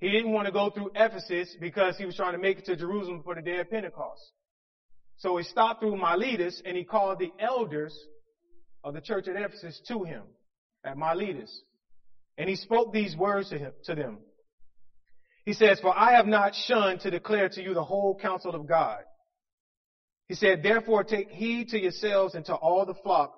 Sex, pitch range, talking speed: male, 150-210 Hz, 200 wpm